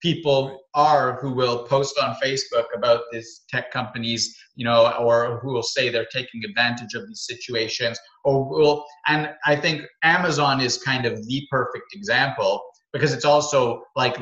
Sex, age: male, 30-49